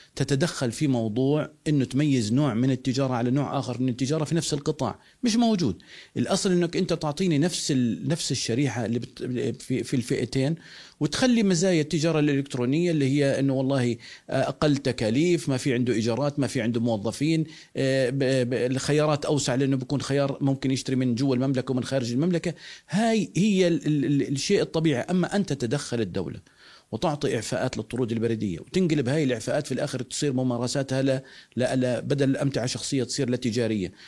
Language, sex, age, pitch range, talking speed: Arabic, male, 40-59, 130-160 Hz, 155 wpm